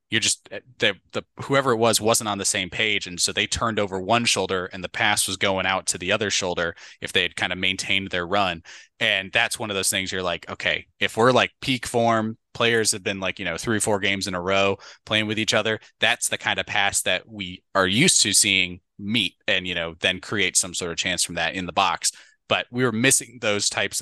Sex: male